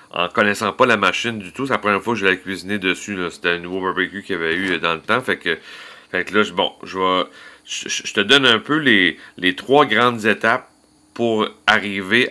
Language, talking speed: French, 240 wpm